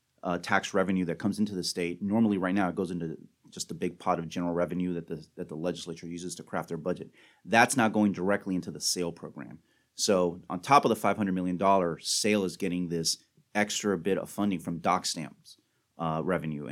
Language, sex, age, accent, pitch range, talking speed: English, male, 30-49, American, 85-100 Hz, 225 wpm